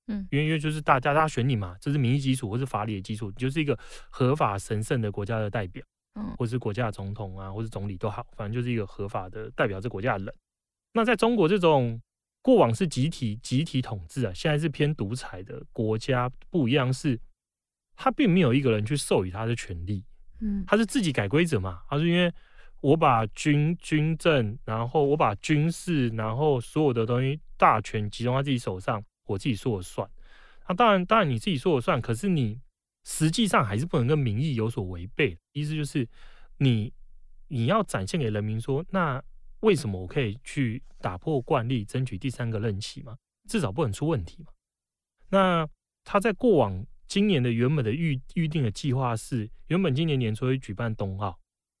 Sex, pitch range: male, 110-155 Hz